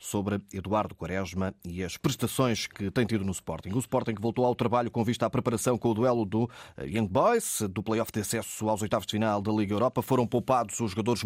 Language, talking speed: Portuguese, 220 wpm